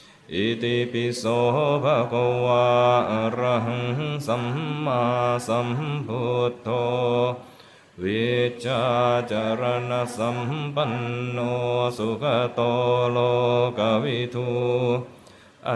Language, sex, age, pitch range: Thai, male, 30-49, 120-125 Hz